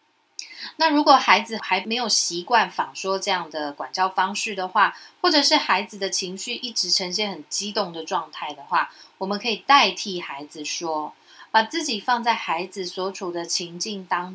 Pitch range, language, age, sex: 175-250 Hz, Chinese, 30-49, female